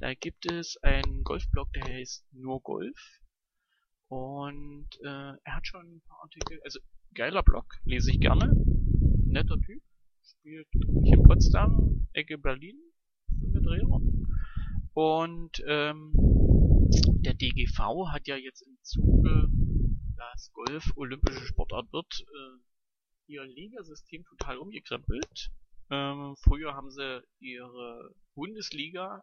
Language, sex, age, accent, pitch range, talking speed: German, male, 30-49, German, 130-190 Hz, 115 wpm